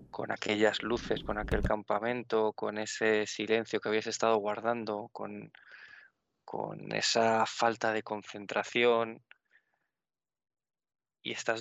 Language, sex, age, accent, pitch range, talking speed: Spanish, male, 20-39, Spanish, 110-120 Hz, 110 wpm